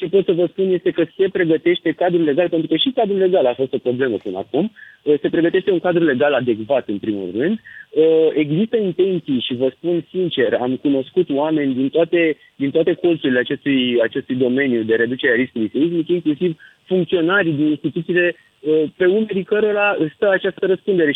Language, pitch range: Romanian, 135-185 Hz